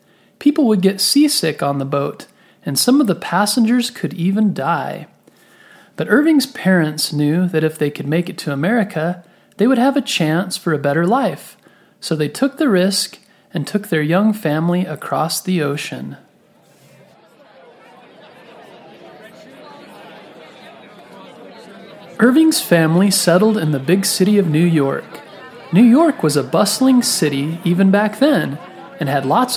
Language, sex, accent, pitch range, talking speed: English, male, American, 155-220 Hz, 145 wpm